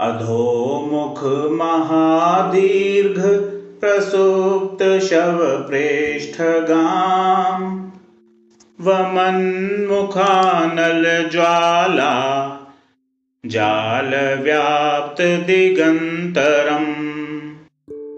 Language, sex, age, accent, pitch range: Hindi, male, 40-59, native, 145-185 Hz